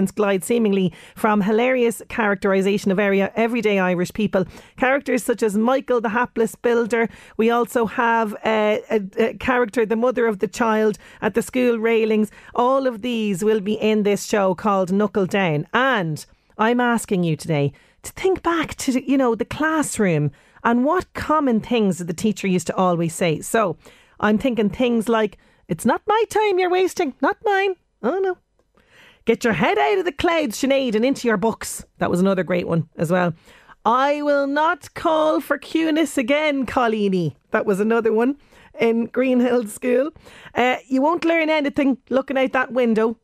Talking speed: 170 wpm